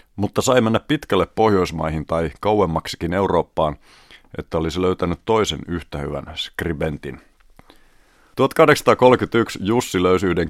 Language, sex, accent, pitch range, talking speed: Finnish, male, native, 85-100 Hz, 110 wpm